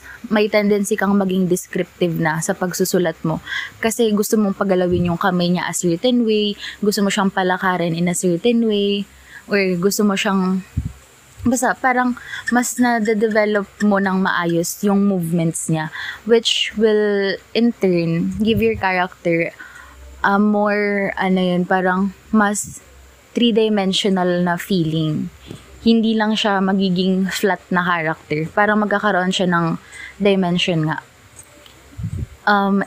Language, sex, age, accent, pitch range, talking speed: Filipino, female, 20-39, native, 180-215 Hz, 130 wpm